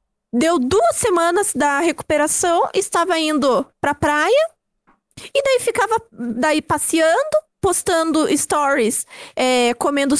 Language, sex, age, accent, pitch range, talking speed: Portuguese, female, 20-39, Brazilian, 295-390 Hz, 110 wpm